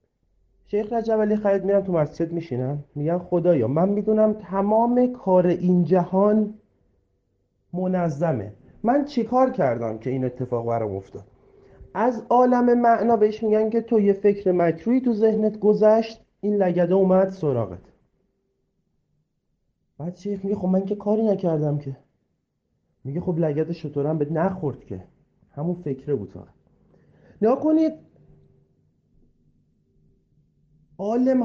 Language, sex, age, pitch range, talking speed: Persian, male, 40-59, 160-225 Hz, 120 wpm